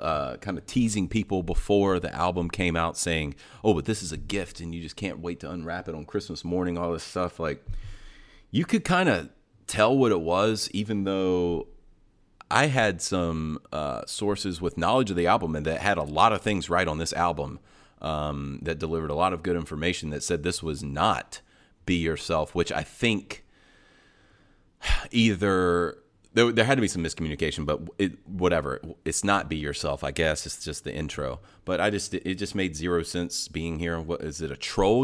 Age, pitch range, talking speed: 30-49, 80-110 Hz, 200 wpm